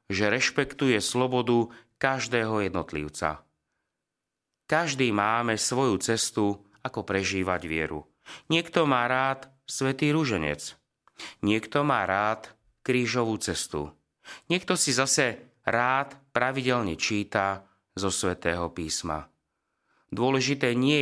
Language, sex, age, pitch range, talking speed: Slovak, male, 30-49, 95-130 Hz, 95 wpm